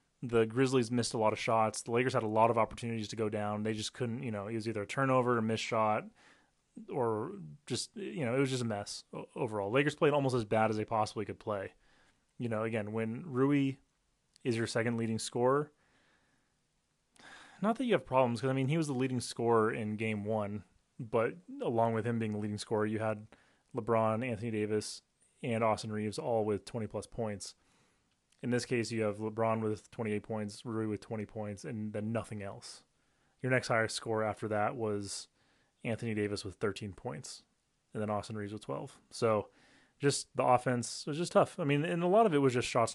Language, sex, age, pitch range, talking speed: English, male, 30-49, 110-130 Hz, 210 wpm